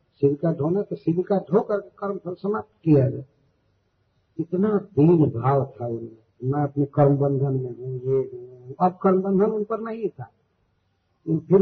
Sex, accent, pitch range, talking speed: male, native, 130-180 Hz, 145 wpm